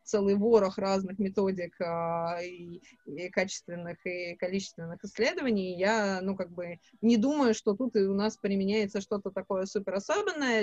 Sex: female